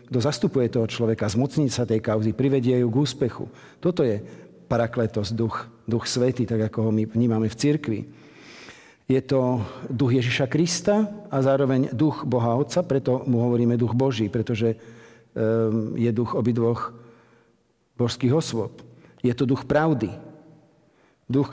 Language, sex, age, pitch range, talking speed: Slovak, male, 50-69, 120-140 Hz, 140 wpm